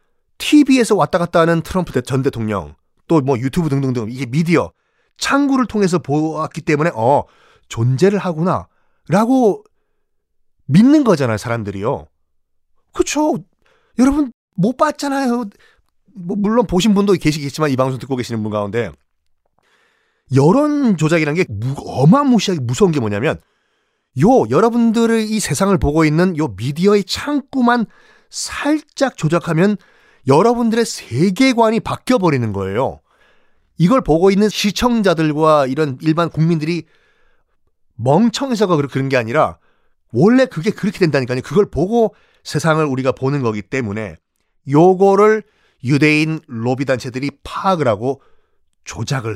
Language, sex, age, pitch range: Korean, male, 30-49, 135-215 Hz